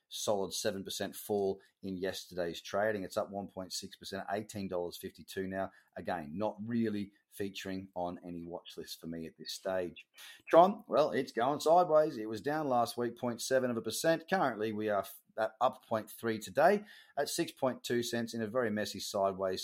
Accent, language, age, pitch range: Australian, English, 30-49, 95-130 Hz